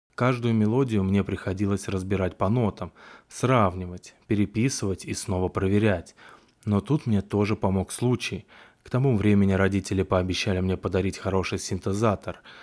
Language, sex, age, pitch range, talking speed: Russian, male, 20-39, 95-110 Hz, 130 wpm